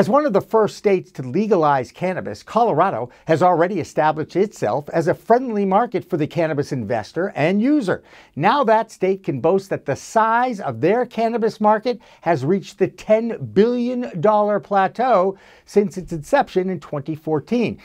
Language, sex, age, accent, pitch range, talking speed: English, male, 60-79, American, 155-205 Hz, 160 wpm